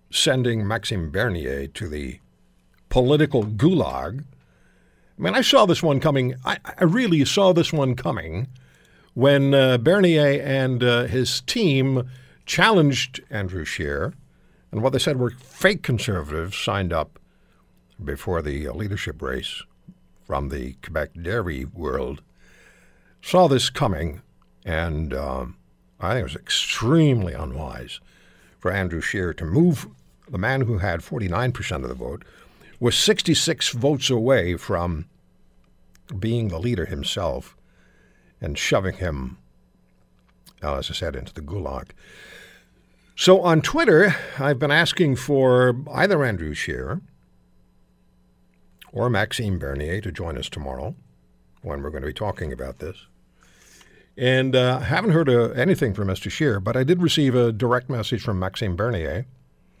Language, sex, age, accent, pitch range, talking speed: English, male, 60-79, American, 80-135 Hz, 140 wpm